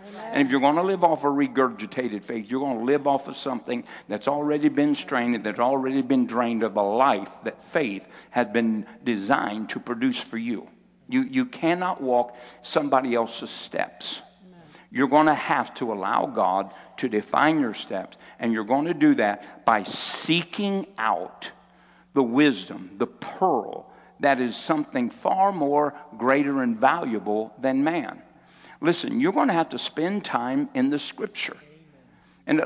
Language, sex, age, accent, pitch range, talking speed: English, male, 60-79, American, 130-190 Hz, 165 wpm